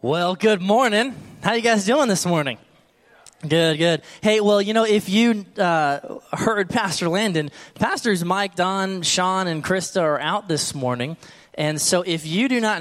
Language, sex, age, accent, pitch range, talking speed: English, male, 20-39, American, 130-180 Hz, 180 wpm